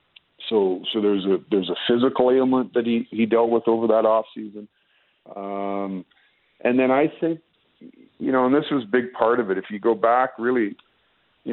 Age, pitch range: 50-69, 105-120 Hz